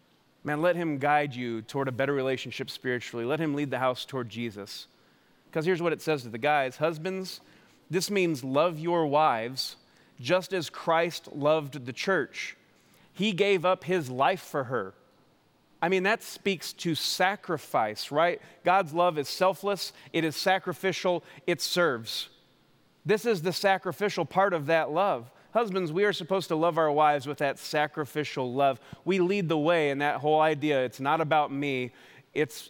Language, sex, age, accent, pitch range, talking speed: English, male, 30-49, American, 140-180 Hz, 170 wpm